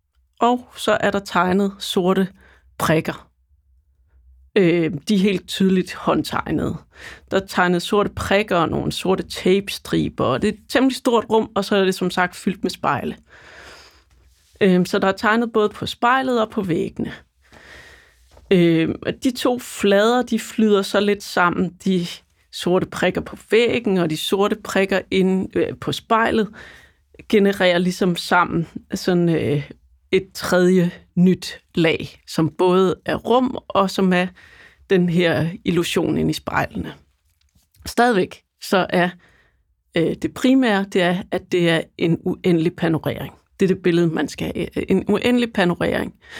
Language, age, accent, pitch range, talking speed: Danish, 30-49, native, 170-215 Hz, 145 wpm